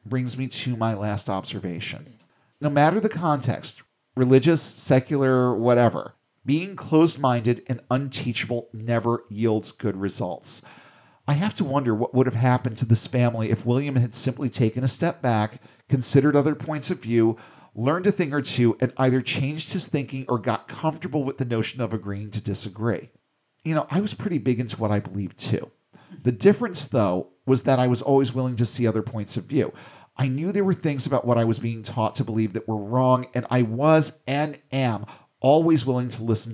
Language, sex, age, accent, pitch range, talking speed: English, male, 40-59, American, 115-145 Hz, 190 wpm